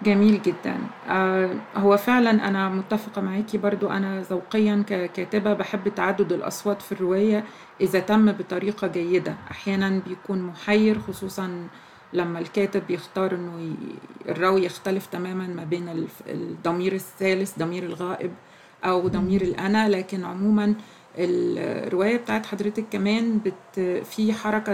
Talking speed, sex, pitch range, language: 120 wpm, female, 180-205 Hz, Arabic